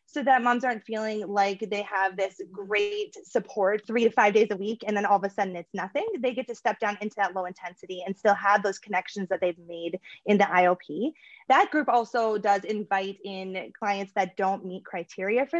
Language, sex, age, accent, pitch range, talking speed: English, female, 20-39, American, 195-245 Hz, 220 wpm